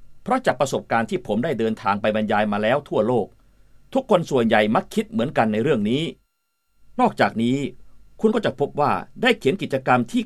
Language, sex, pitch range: Thai, male, 110-170 Hz